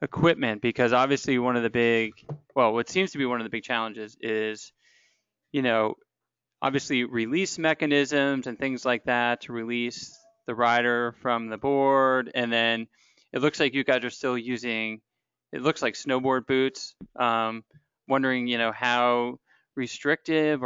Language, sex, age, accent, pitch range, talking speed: English, male, 30-49, American, 115-135 Hz, 160 wpm